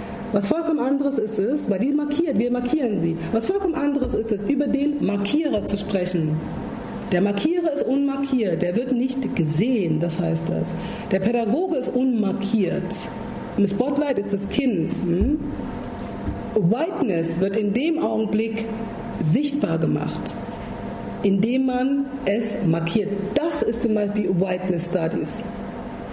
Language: German